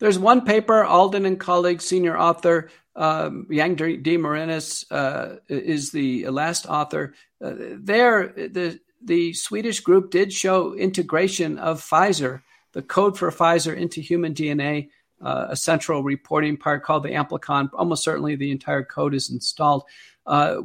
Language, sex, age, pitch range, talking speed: English, male, 50-69, 145-175 Hz, 145 wpm